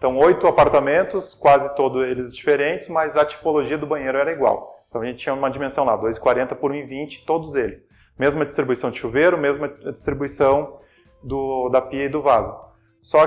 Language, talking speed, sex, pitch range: Portuguese, 170 wpm, male, 140-170 Hz